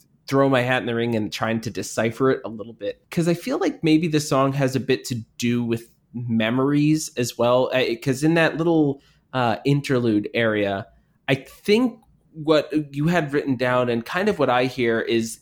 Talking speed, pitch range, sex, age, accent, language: 200 wpm, 120-150 Hz, male, 20-39, American, English